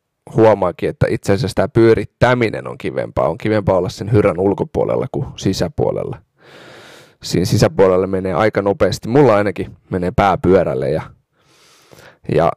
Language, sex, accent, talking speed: Finnish, male, native, 130 wpm